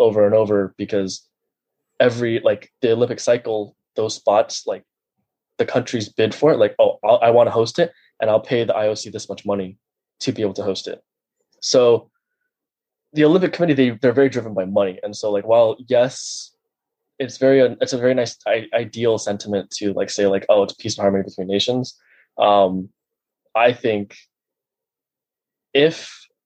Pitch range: 100-130 Hz